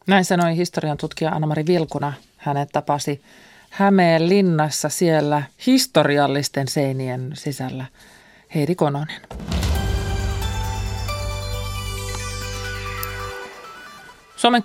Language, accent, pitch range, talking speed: Finnish, native, 140-180 Hz, 75 wpm